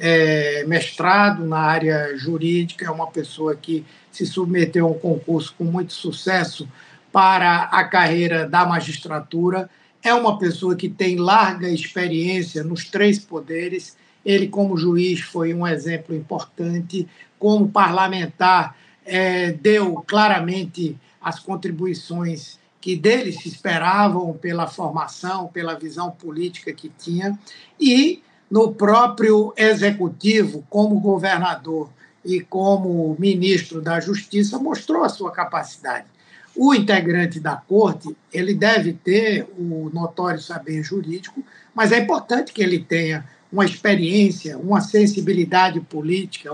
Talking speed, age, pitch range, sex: 120 wpm, 60-79, 165-205 Hz, male